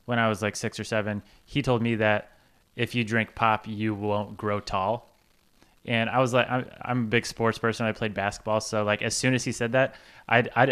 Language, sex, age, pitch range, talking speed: English, male, 20-39, 105-120 Hz, 230 wpm